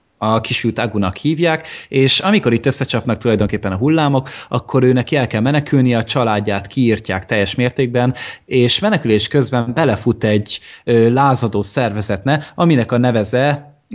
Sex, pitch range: male, 110-135 Hz